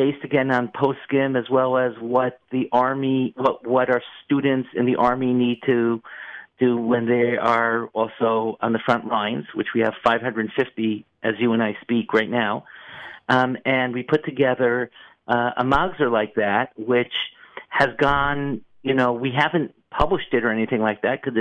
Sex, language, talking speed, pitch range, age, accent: male, English, 180 wpm, 120-140 Hz, 50-69, American